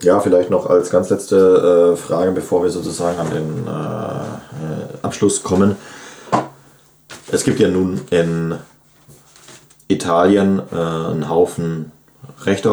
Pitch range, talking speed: 85-95 Hz, 125 wpm